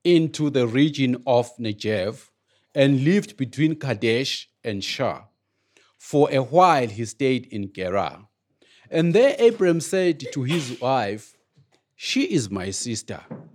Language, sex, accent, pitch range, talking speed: English, male, South African, 120-180 Hz, 130 wpm